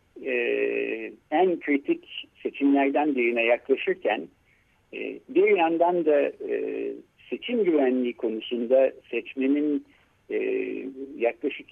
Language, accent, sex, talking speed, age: Turkish, native, male, 85 wpm, 60-79